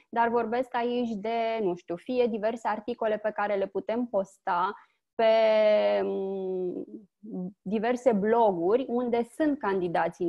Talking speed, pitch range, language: 115 wpm, 205-240 Hz, Romanian